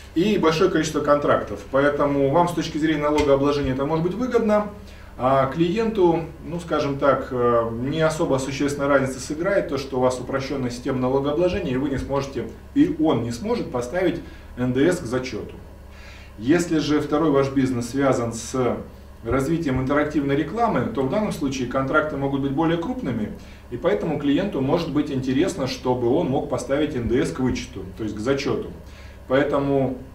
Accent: native